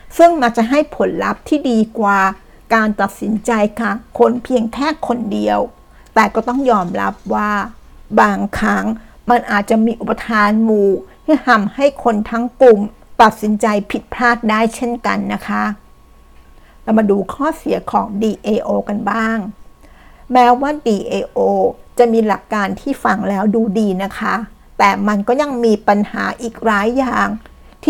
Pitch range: 205-240 Hz